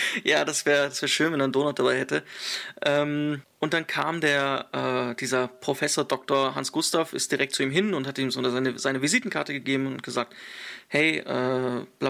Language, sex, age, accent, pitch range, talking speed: German, male, 30-49, German, 135-155 Hz, 190 wpm